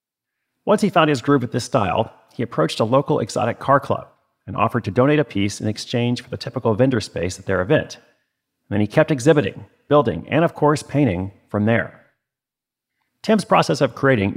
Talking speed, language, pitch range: 195 wpm, English, 110-135 Hz